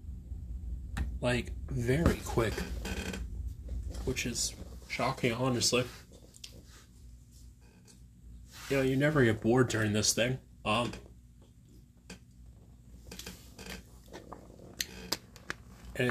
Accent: American